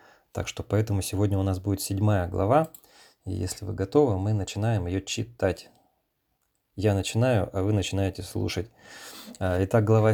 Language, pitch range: Russian, 95-115 Hz